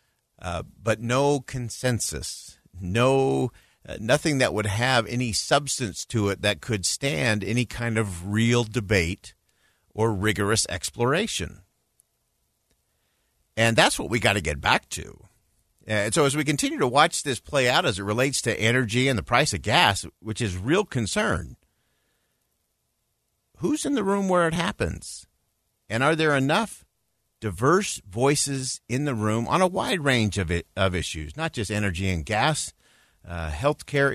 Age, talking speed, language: 50-69, 155 wpm, English